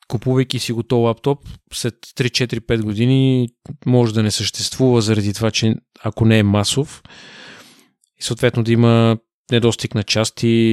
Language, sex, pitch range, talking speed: Bulgarian, male, 110-130 Hz, 140 wpm